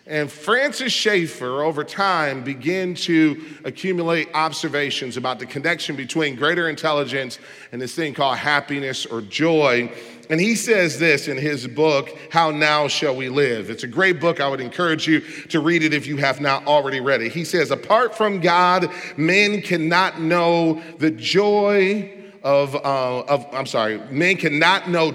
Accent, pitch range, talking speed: American, 135-185 Hz, 165 wpm